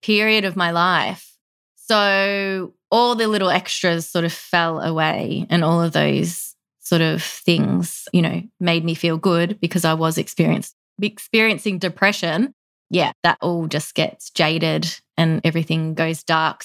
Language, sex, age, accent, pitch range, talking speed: English, female, 20-39, Australian, 170-200 Hz, 150 wpm